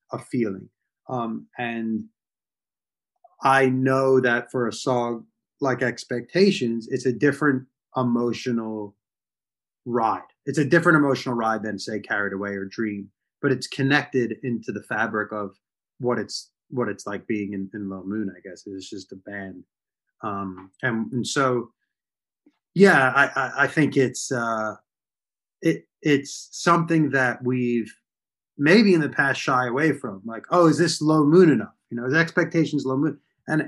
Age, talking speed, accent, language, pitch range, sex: 30-49, 155 wpm, American, English, 115-145 Hz, male